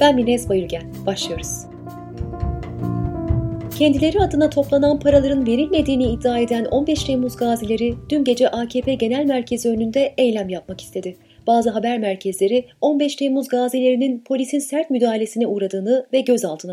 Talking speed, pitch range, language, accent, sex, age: 125 wpm, 210-270 Hz, Turkish, native, female, 30-49